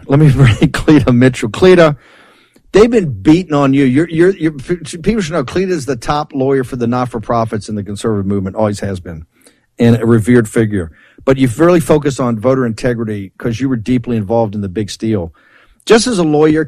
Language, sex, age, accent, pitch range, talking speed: English, male, 50-69, American, 125-160 Hz, 190 wpm